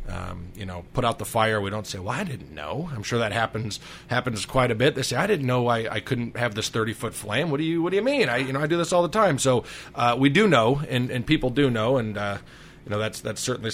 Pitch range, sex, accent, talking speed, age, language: 110-140 Hz, male, American, 295 wpm, 30-49, English